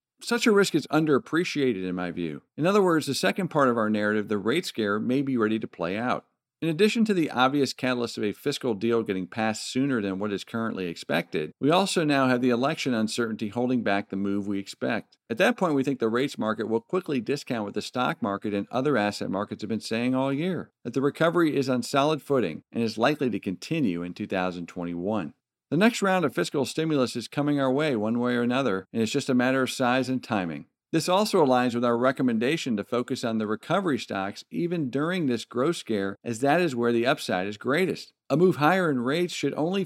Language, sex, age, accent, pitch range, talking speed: English, male, 50-69, American, 105-145 Hz, 225 wpm